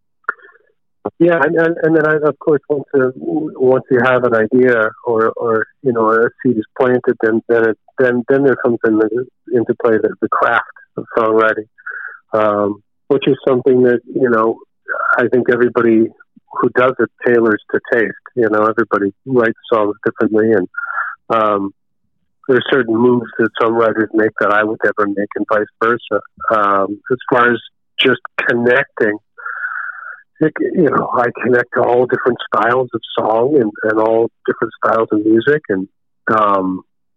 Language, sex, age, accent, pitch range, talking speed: English, male, 50-69, American, 110-130 Hz, 170 wpm